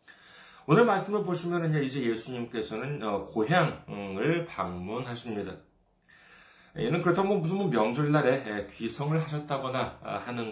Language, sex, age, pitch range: Korean, male, 40-59, 110-165 Hz